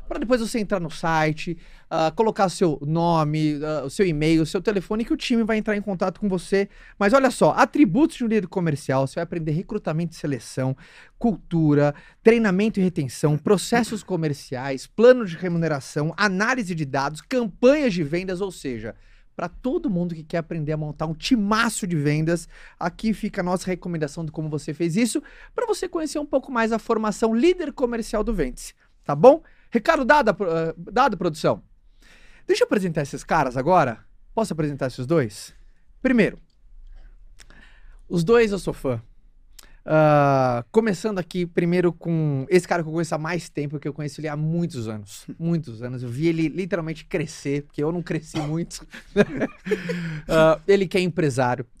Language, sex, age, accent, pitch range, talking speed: Portuguese, male, 30-49, Brazilian, 150-205 Hz, 175 wpm